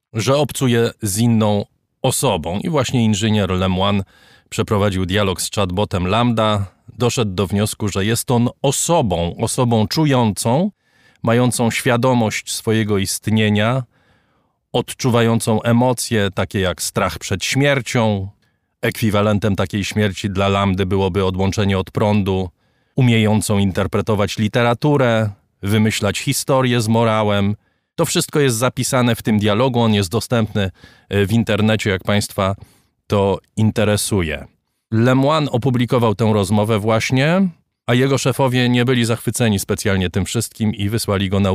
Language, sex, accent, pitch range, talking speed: Polish, male, native, 100-120 Hz, 120 wpm